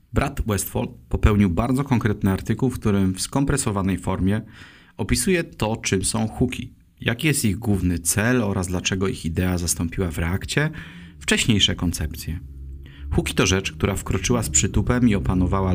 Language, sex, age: Polish, male, 30-49